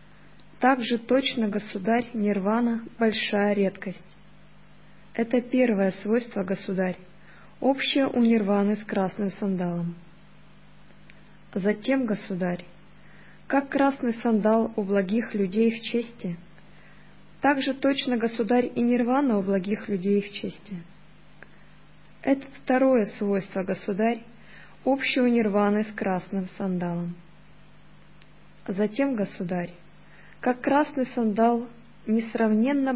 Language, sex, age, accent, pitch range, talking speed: Russian, female, 20-39, native, 185-235 Hz, 95 wpm